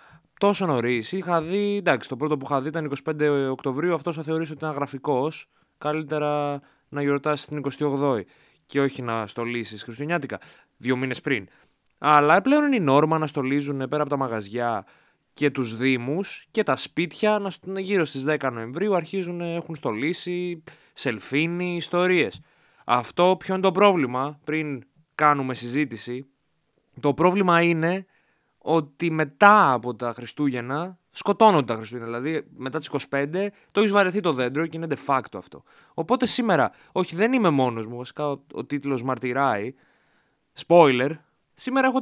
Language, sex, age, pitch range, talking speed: Greek, male, 20-39, 125-170 Hz, 155 wpm